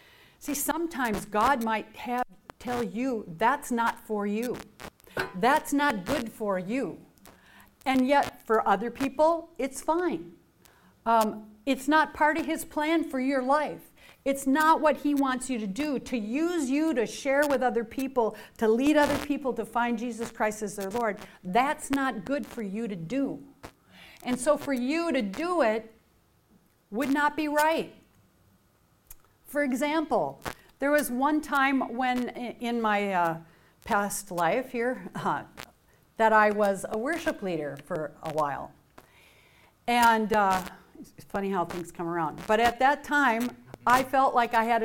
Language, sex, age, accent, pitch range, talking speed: English, female, 50-69, American, 210-275 Hz, 160 wpm